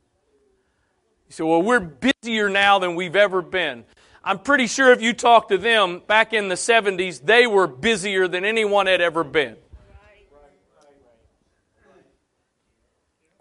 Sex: male